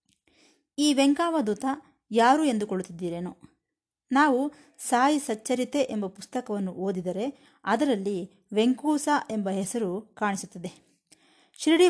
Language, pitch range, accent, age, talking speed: Kannada, 195-270 Hz, native, 20-39, 80 wpm